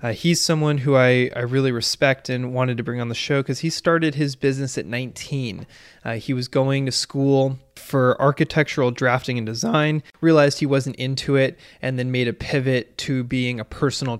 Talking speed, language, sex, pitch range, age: 200 wpm, English, male, 120-135 Hz, 20-39